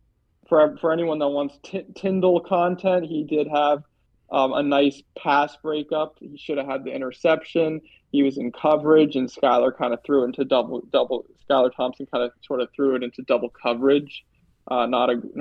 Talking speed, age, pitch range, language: 190 wpm, 20-39, 125-155 Hz, English